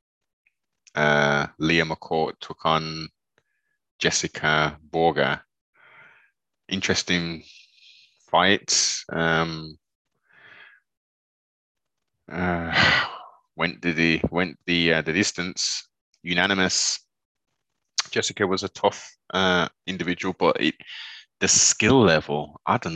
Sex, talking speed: male, 85 wpm